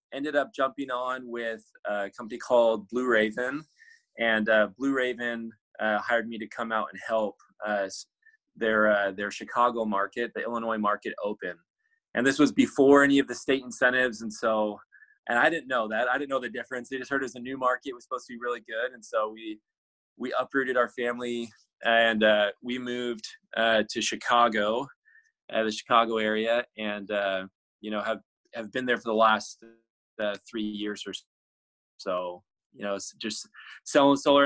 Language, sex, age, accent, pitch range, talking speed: English, male, 20-39, American, 110-135 Hz, 185 wpm